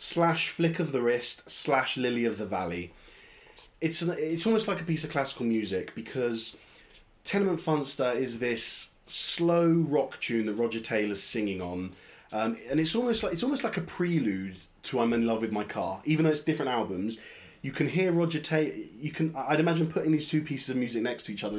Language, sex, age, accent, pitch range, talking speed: English, male, 20-39, British, 105-150 Hz, 205 wpm